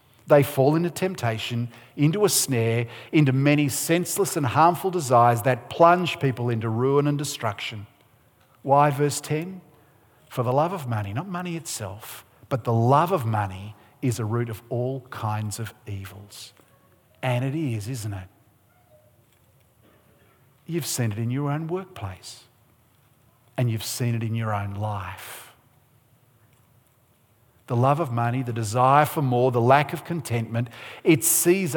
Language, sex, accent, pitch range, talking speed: English, male, Australian, 115-140 Hz, 145 wpm